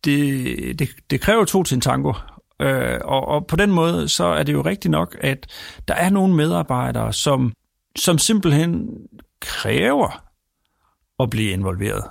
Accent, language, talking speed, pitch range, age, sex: native, Danish, 150 wpm, 110-150 Hz, 40-59, male